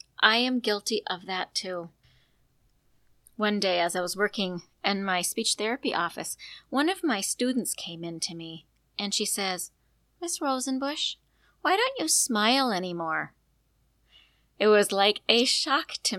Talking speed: 150 wpm